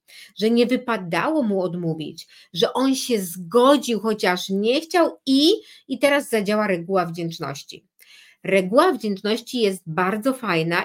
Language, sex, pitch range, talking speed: Polish, female, 190-265 Hz, 125 wpm